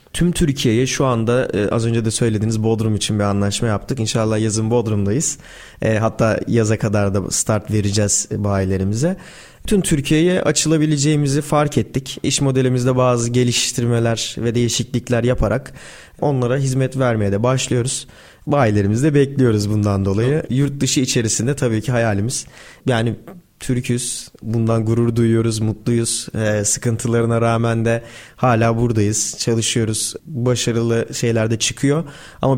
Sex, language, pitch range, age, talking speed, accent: male, Turkish, 110-130 Hz, 30-49, 125 wpm, native